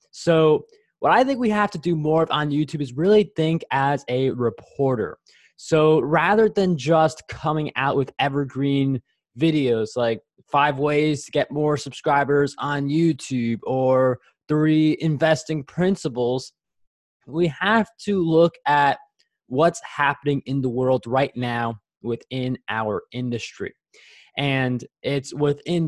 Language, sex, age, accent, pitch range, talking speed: English, male, 20-39, American, 125-155 Hz, 135 wpm